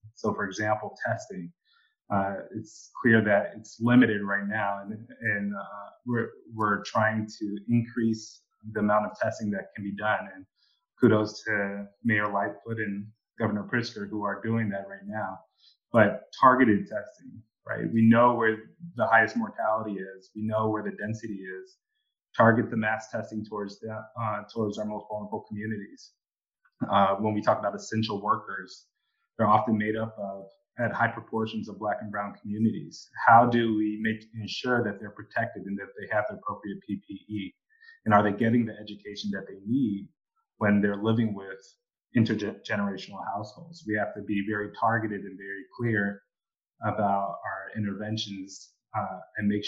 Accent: American